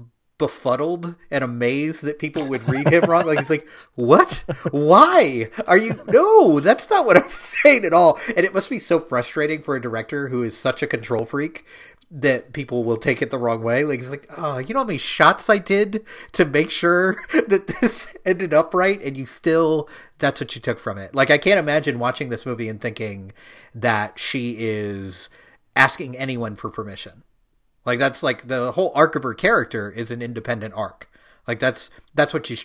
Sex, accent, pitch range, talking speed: male, American, 115-155 Hz, 200 wpm